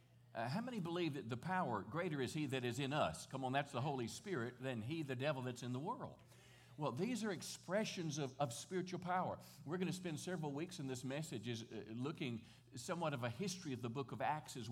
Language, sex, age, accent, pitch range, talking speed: English, male, 50-69, American, 125-170 Hz, 235 wpm